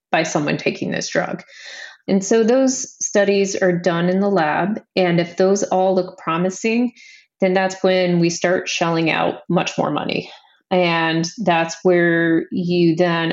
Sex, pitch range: female, 170-195 Hz